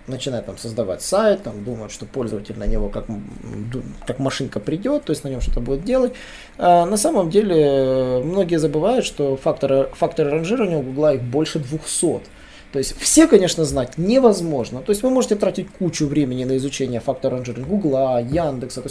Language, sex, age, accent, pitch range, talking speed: Russian, male, 20-39, native, 140-205 Hz, 170 wpm